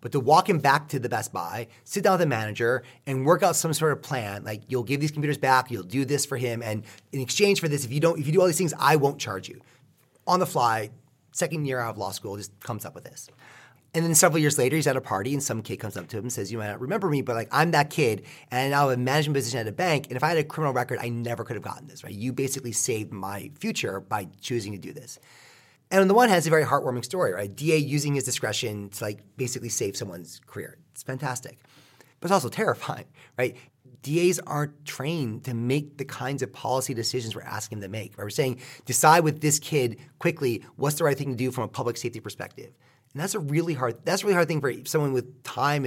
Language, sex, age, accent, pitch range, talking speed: English, male, 30-49, American, 120-150 Hz, 265 wpm